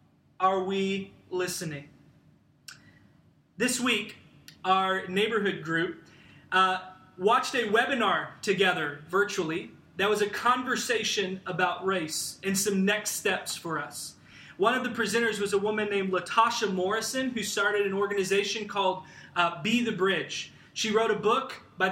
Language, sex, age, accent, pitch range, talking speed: English, male, 20-39, American, 190-235 Hz, 135 wpm